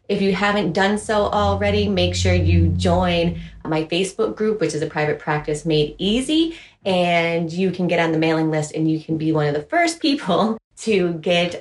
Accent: American